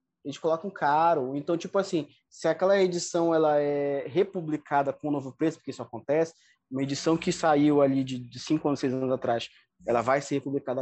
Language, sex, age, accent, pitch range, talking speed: Portuguese, male, 20-39, Brazilian, 140-175 Hz, 205 wpm